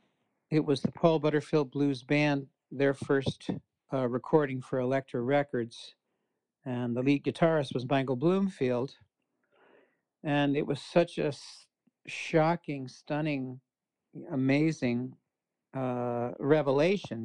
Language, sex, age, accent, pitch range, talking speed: English, male, 60-79, American, 130-155 Hz, 110 wpm